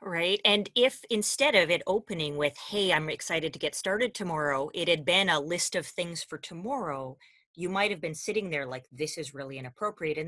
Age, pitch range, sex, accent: 30-49, 155-205 Hz, female, American